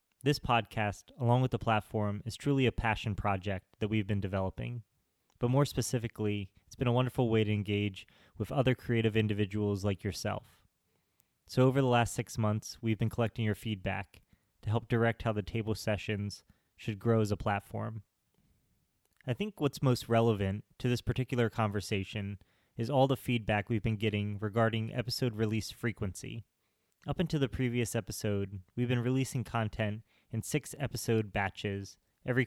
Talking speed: 160 wpm